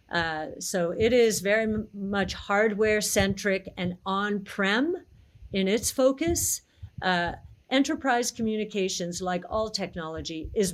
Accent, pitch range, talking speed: American, 180-230 Hz, 110 wpm